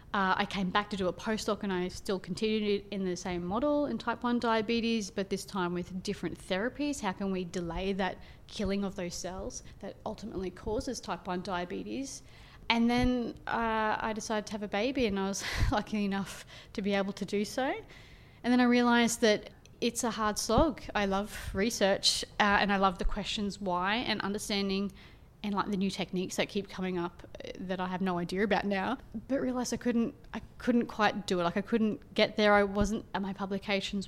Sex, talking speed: female, 205 wpm